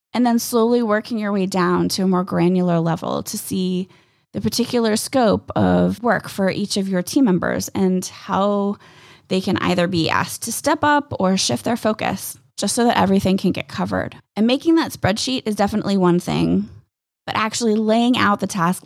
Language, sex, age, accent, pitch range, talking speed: English, female, 20-39, American, 180-225 Hz, 190 wpm